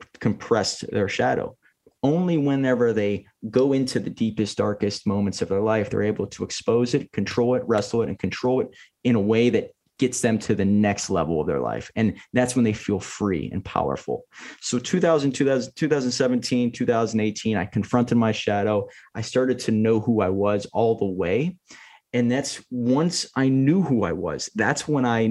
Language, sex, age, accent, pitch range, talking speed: English, male, 20-39, American, 110-145 Hz, 185 wpm